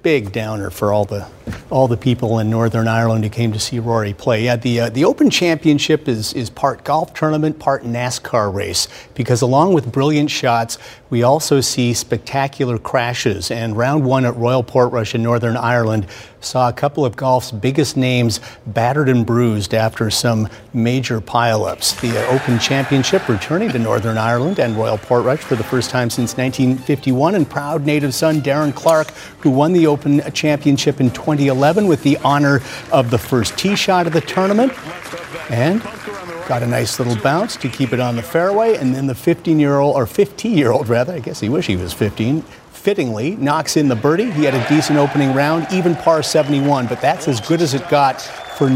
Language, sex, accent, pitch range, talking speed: English, male, American, 115-150 Hz, 195 wpm